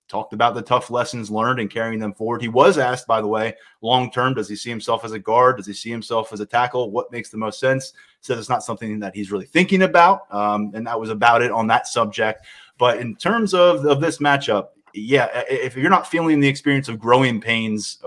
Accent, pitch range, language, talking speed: American, 110-135 Hz, English, 235 wpm